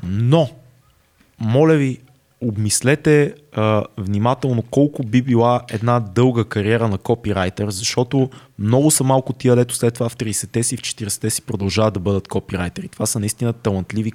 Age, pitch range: 20-39, 105-135 Hz